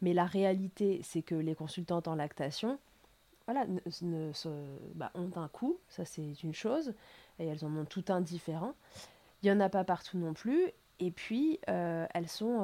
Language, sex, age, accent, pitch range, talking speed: French, female, 20-39, French, 170-205 Hz, 190 wpm